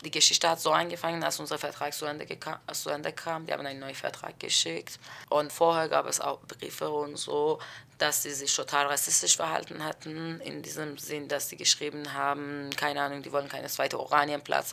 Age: 20-39